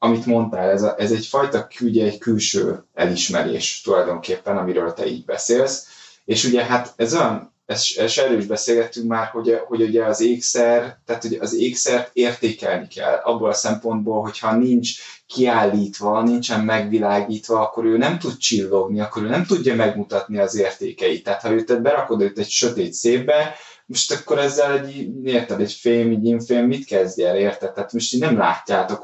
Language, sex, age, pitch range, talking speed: Hungarian, male, 20-39, 105-120 Hz, 170 wpm